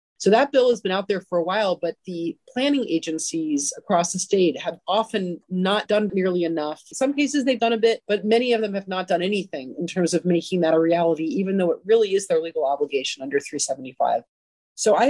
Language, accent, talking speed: English, American, 225 wpm